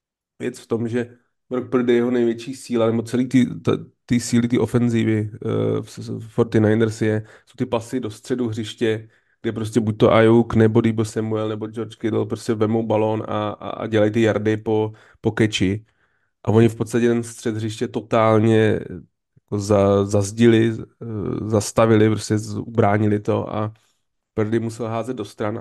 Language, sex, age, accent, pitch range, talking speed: Czech, male, 30-49, native, 110-115 Hz, 155 wpm